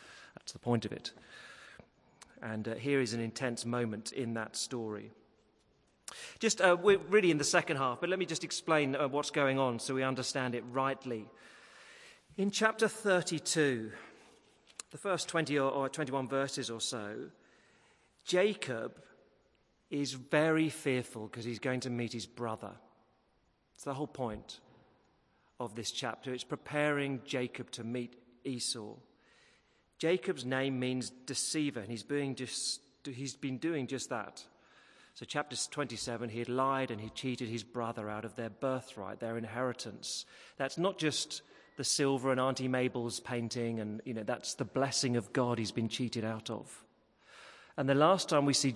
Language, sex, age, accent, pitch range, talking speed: English, male, 40-59, British, 115-145 Hz, 160 wpm